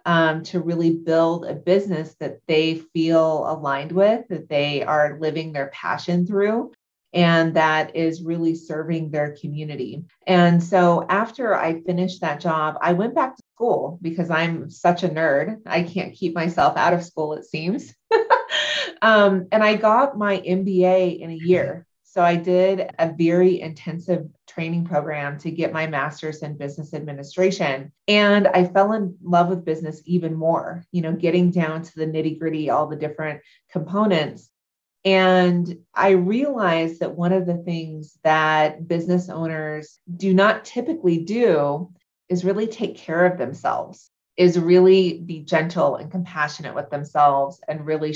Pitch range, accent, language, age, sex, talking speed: 155-185 Hz, American, English, 30-49, female, 160 wpm